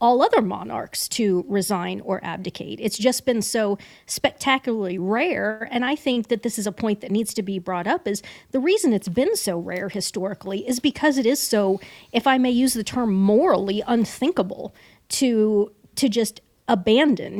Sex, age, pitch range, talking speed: female, 40-59, 200-245 Hz, 180 wpm